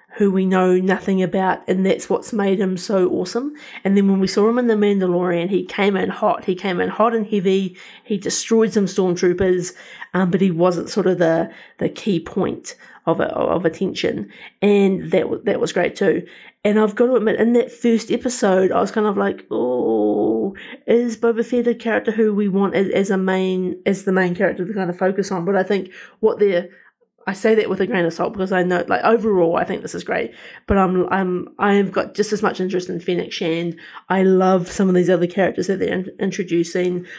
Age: 30-49